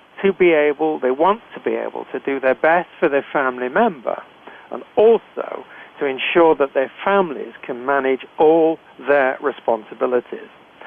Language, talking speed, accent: English, 150 wpm, British